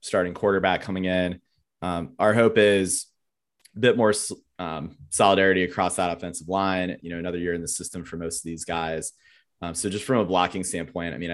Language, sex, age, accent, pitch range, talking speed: English, male, 30-49, American, 85-95 Hz, 200 wpm